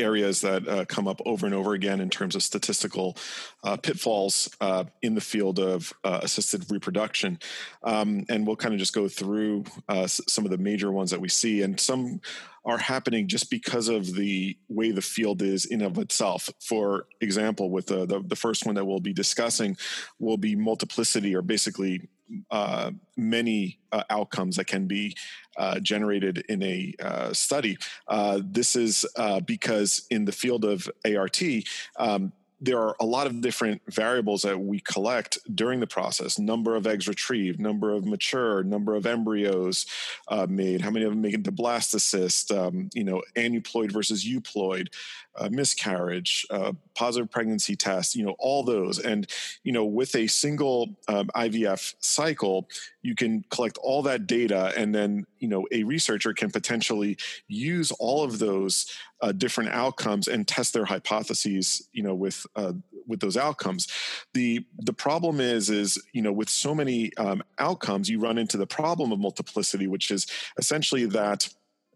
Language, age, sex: English, 40-59, male